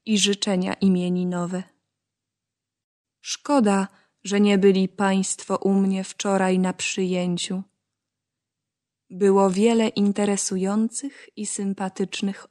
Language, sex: Ukrainian, female